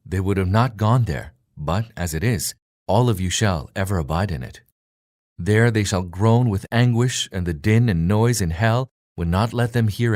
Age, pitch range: 40-59, 90-120 Hz